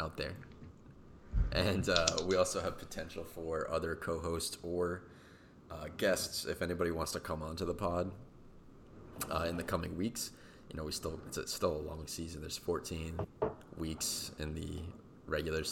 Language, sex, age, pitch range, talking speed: English, male, 20-39, 80-90 Hz, 165 wpm